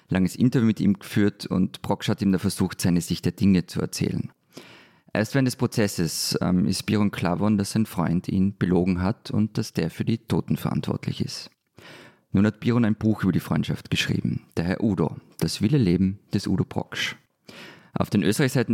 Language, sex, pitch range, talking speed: German, male, 95-115 Hz, 190 wpm